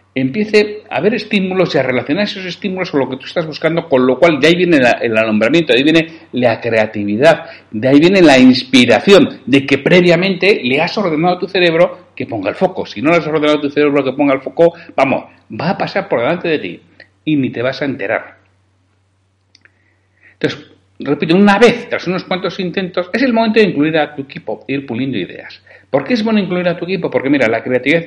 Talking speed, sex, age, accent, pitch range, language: 220 wpm, male, 60-79, Spanish, 130-180 Hz, Spanish